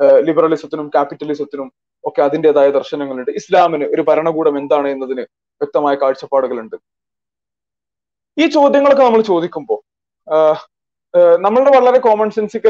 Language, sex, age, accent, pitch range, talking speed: Malayalam, male, 20-39, native, 145-200 Hz, 95 wpm